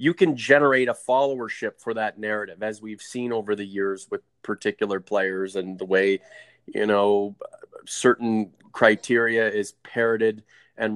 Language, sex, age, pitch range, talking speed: English, male, 30-49, 105-125 Hz, 150 wpm